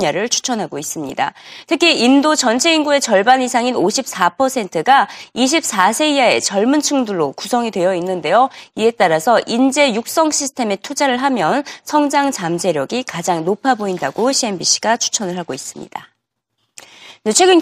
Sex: female